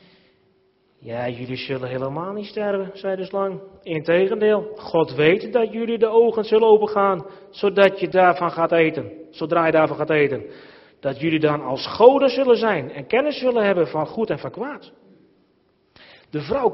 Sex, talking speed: male, 170 wpm